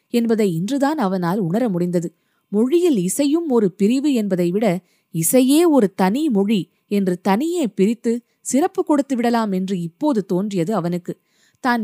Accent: native